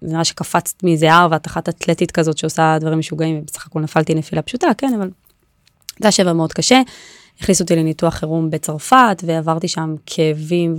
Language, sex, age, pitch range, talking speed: Hebrew, female, 20-39, 160-190 Hz, 165 wpm